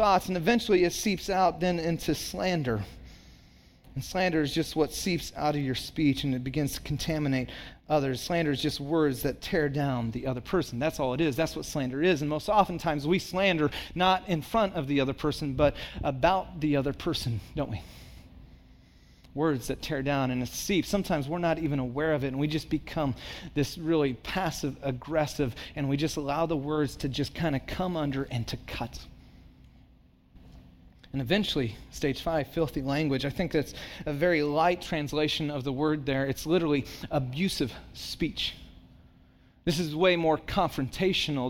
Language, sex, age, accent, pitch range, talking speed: English, male, 30-49, American, 135-170 Hz, 180 wpm